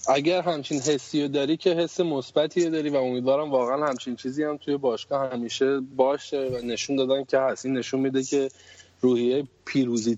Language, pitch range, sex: Persian, 115-140 Hz, male